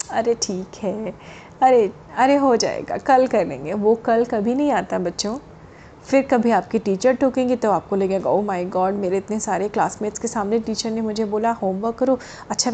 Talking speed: 185 wpm